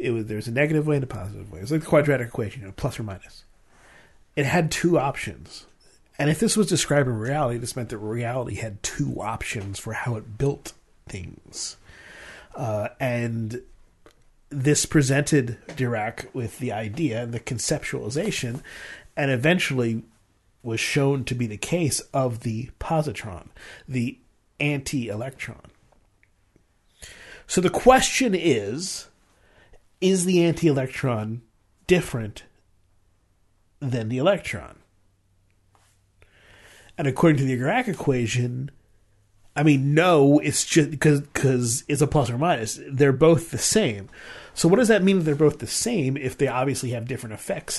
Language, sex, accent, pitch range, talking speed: English, male, American, 110-145 Hz, 145 wpm